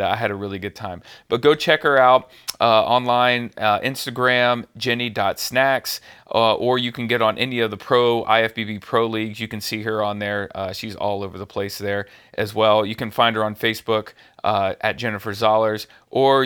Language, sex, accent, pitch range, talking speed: English, male, American, 110-130 Hz, 195 wpm